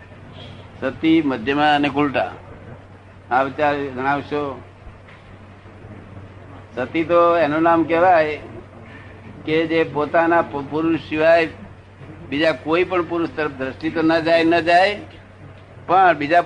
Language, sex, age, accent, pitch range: Gujarati, male, 60-79, native, 100-155 Hz